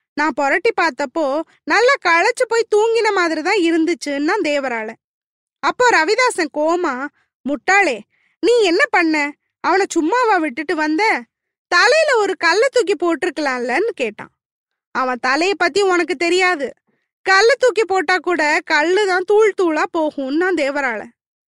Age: 20-39